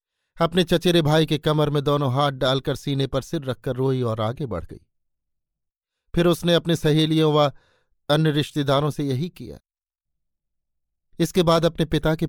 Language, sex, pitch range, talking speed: Hindi, male, 120-155 Hz, 160 wpm